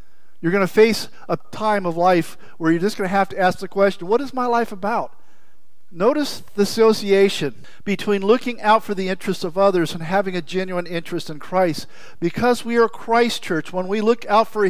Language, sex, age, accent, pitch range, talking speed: English, male, 50-69, American, 185-225 Hz, 210 wpm